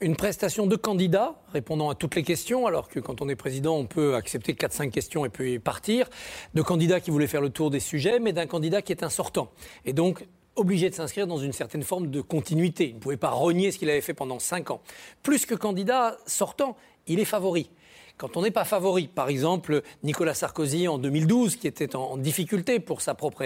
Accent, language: French, French